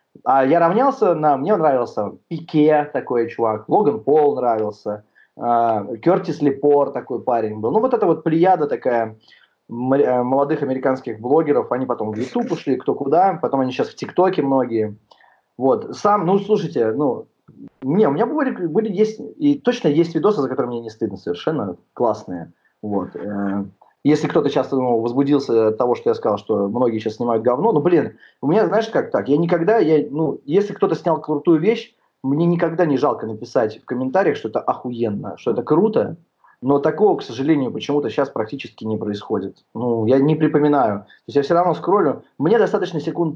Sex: male